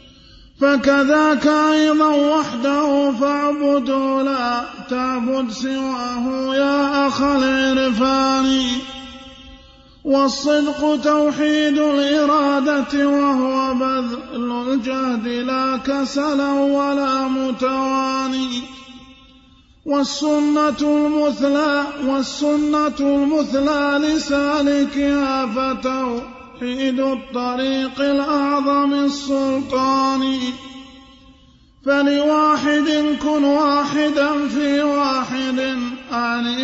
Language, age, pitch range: Arabic, 20-39, 265-285 Hz